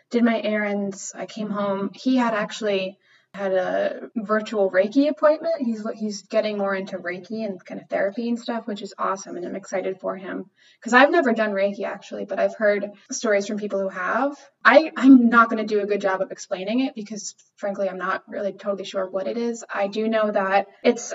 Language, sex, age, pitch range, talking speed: English, female, 20-39, 195-235 Hz, 215 wpm